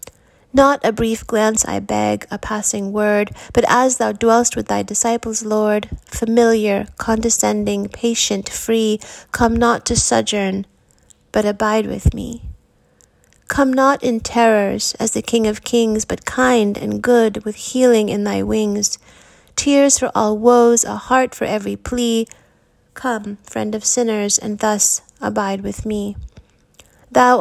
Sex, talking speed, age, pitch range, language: female, 145 wpm, 30-49, 195-235 Hz, English